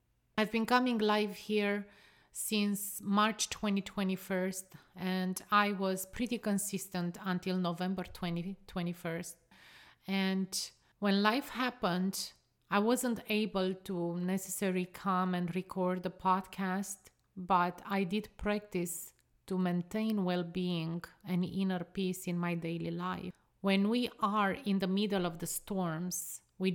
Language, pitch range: English, 180-205 Hz